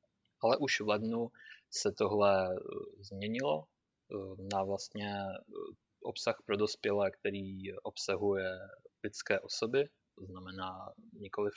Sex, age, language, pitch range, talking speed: male, 20-39, Czech, 95-105 Hz, 100 wpm